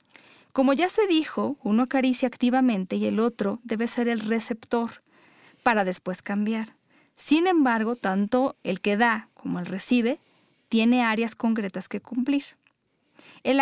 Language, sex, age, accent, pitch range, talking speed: Spanish, female, 40-59, Mexican, 205-250 Hz, 140 wpm